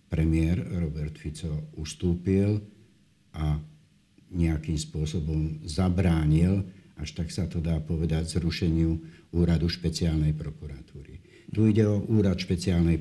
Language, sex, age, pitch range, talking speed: Slovak, male, 60-79, 80-95 Hz, 105 wpm